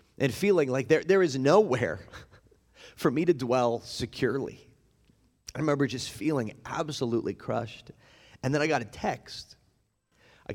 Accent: American